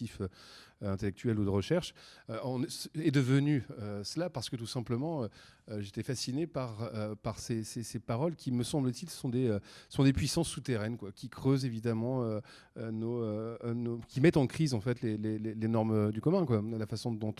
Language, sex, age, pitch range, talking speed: French, male, 40-59, 110-130 Hz, 205 wpm